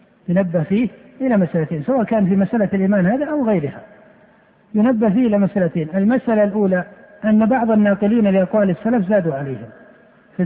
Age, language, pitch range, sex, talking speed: 60-79, Arabic, 190-220 Hz, male, 150 wpm